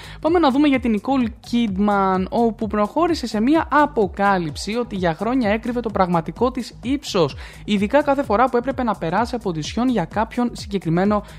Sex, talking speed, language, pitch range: male, 175 wpm, Greek, 180-245 Hz